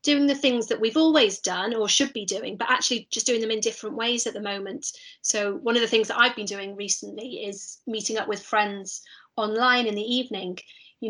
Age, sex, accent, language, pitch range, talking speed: 30-49, female, British, English, 205-240 Hz, 225 wpm